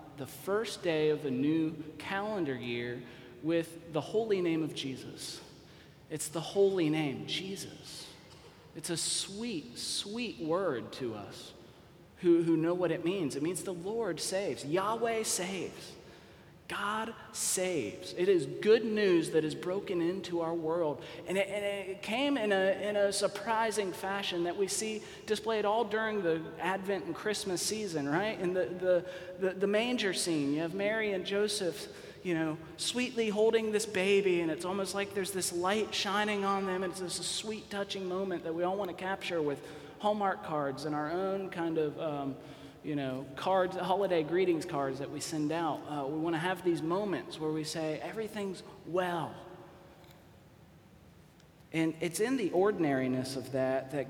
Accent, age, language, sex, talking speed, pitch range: American, 30-49, English, male, 170 wpm, 160-200 Hz